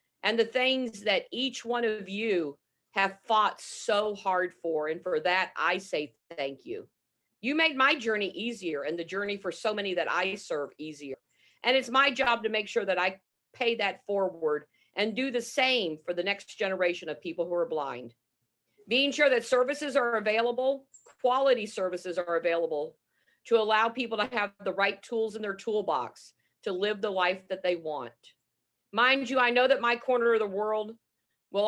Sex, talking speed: female, 190 wpm